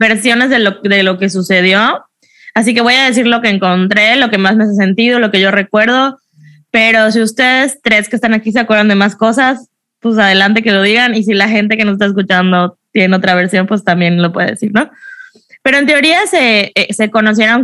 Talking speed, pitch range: 220 wpm, 185-235 Hz